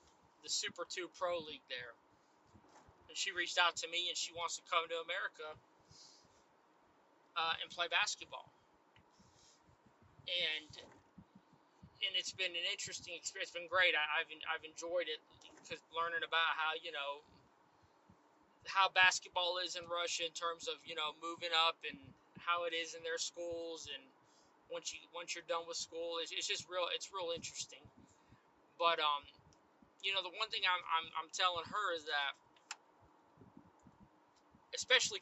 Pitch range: 165-200 Hz